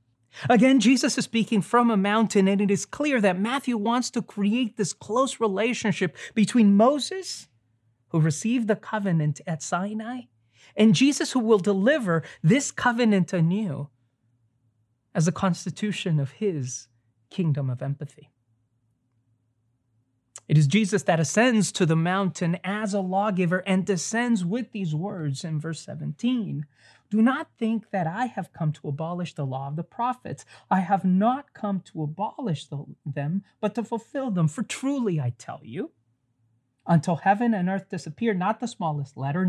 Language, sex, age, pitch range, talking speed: English, male, 20-39, 145-220 Hz, 155 wpm